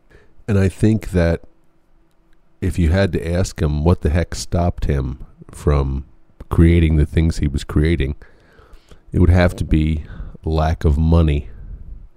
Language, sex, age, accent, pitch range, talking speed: English, male, 50-69, American, 80-95 Hz, 150 wpm